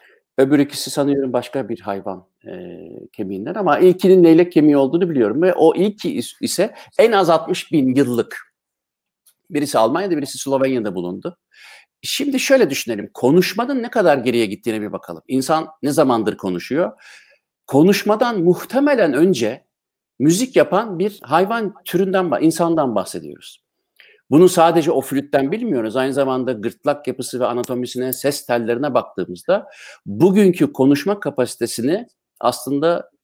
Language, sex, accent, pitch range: Turkish, male, native, 125-185 Hz